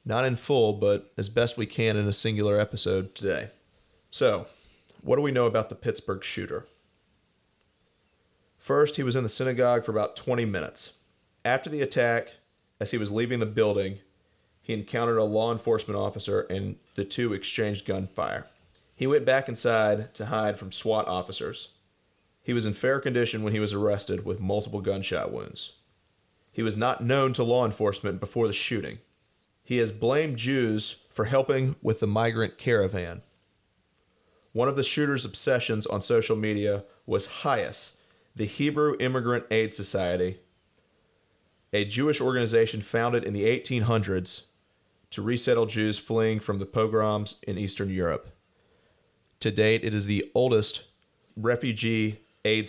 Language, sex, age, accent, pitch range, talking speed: English, male, 30-49, American, 100-115 Hz, 155 wpm